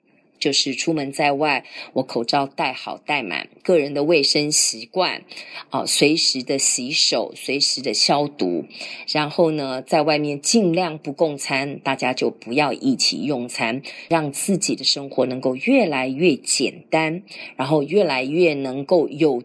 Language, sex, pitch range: Chinese, female, 140-195 Hz